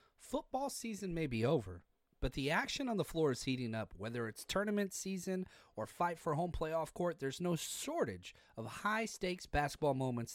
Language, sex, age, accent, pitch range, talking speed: English, male, 30-49, American, 140-220 Hz, 180 wpm